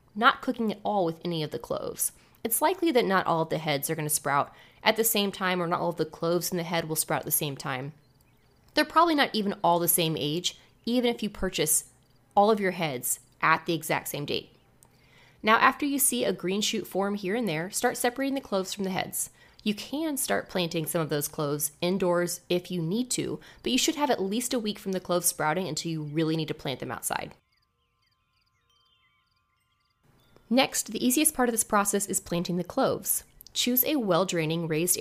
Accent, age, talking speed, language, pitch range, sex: American, 20-39, 215 wpm, English, 160-220 Hz, female